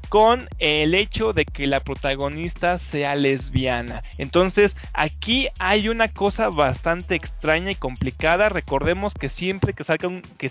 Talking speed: 125 wpm